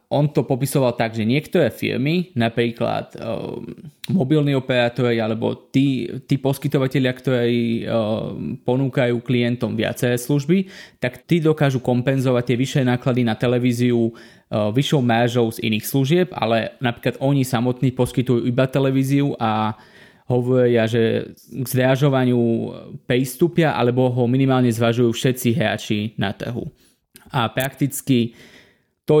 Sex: male